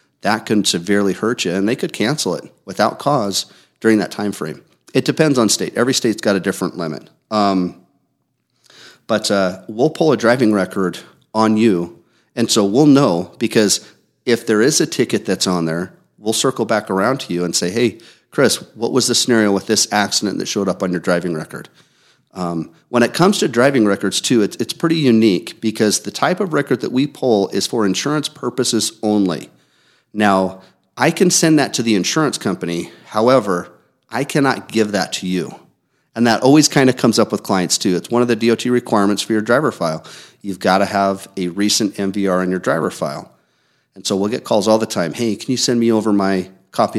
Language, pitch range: English, 95-120 Hz